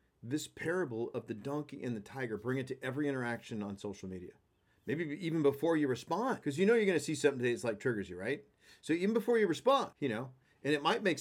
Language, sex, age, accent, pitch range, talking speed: English, male, 40-59, American, 120-170 Hz, 245 wpm